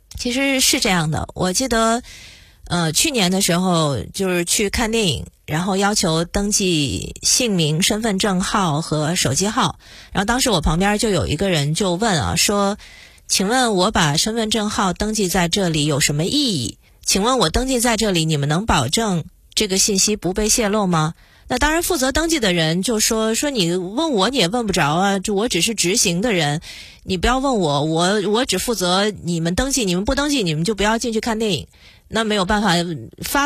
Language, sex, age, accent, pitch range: Chinese, female, 30-49, native, 175-255 Hz